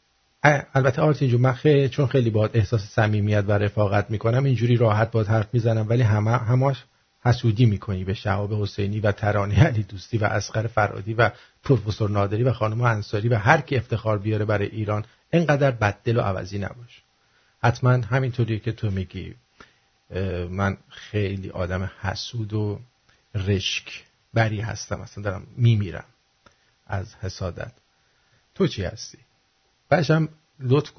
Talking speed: 145 wpm